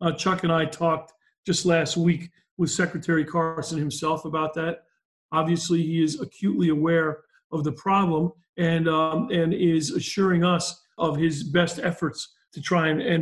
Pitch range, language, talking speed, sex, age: 165-190 Hz, English, 165 wpm, male, 40-59